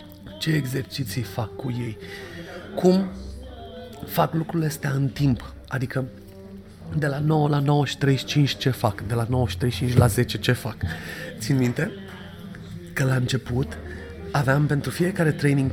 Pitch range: 110-140 Hz